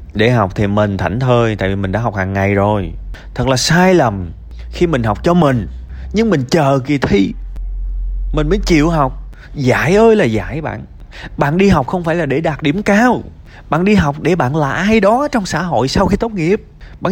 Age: 20-39